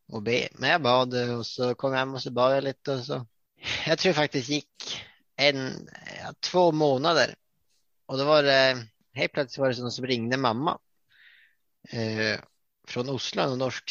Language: Swedish